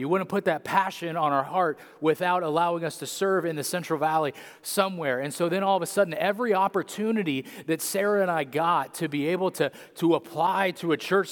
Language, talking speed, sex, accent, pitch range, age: English, 225 wpm, male, American, 125-160 Hz, 30-49